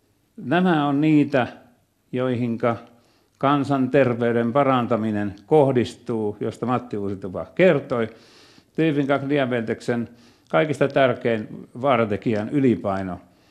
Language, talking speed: Finnish, 80 wpm